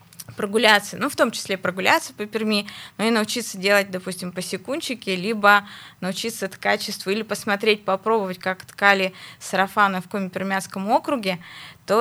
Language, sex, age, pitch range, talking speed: Russian, female, 20-39, 195-230 Hz, 145 wpm